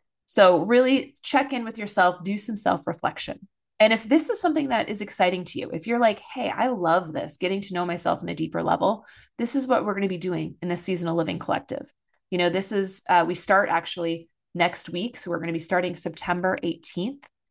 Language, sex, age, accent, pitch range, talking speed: English, female, 20-39, American, 175-220 Hz, 220 wpm